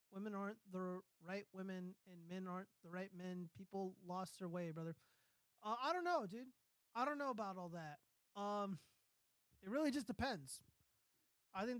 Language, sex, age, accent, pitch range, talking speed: English, male, 20-39, American, 180-225 Hz, 175 wpm